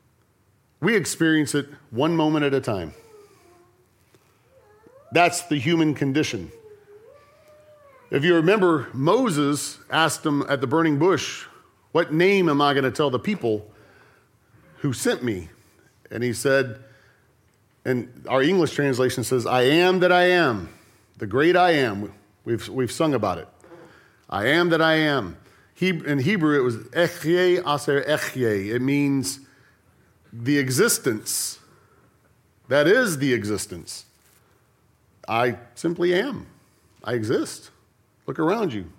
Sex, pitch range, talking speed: male, 125-175 Hz, 130 wpm